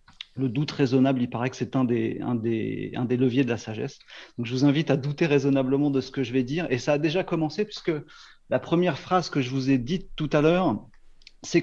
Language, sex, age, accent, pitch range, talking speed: French, male, 40-59, French, 130-160 Hz, 250 wpm